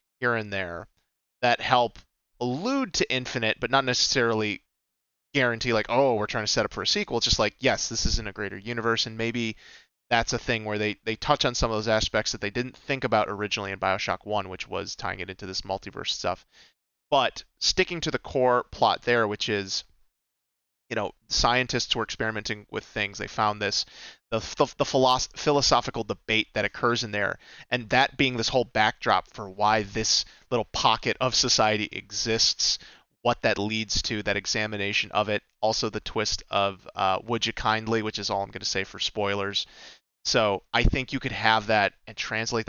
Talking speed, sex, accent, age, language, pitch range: 195 wpm, male, American, 30-49, English, 100-120 Hz